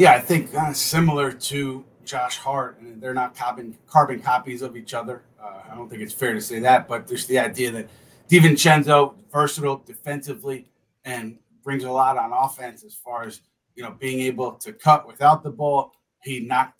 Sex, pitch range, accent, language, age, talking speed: male, 120-145 Hz, American, English, 30-49, 195 wpm